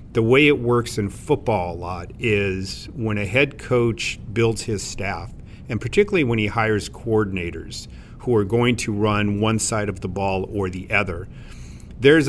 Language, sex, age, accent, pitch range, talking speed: English, male, 50-69, American, 105-120 Hz, 175 wpm